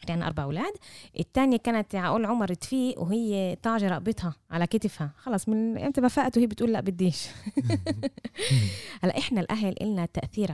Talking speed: 150 wpm